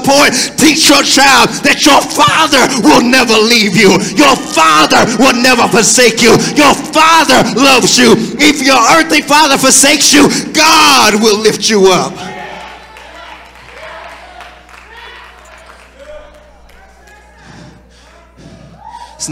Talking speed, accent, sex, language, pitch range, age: 100 wpm, American, male, English, 210-275 Hz, 40-59